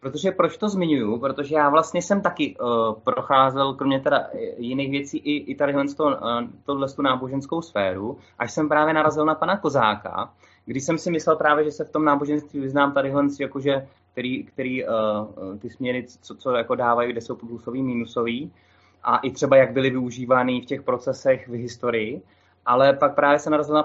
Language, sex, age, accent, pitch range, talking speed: Czech, male, 20-39, native, 125-155 Hz, 185 wpm